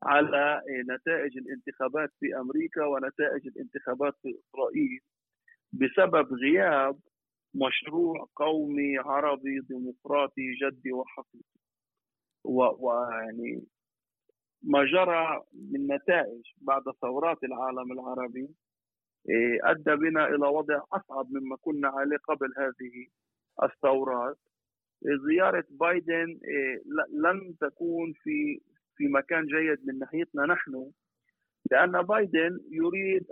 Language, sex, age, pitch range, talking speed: Arabic, male, 50-69, 135-185 Hz, 90 wpm